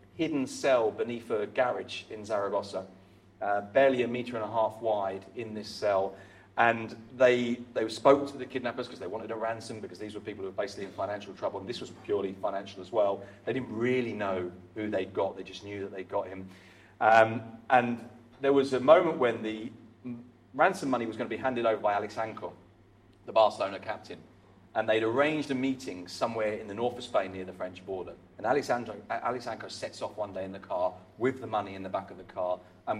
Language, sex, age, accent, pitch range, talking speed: English, male, 30-49, British, 95-120 Hz, 215 wpm